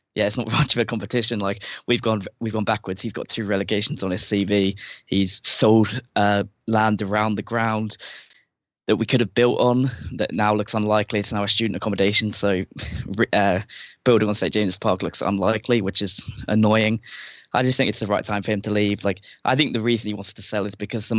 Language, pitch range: English, 105-115 Hz